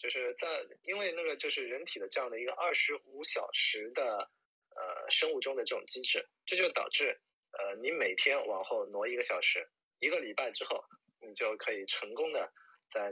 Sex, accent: male, native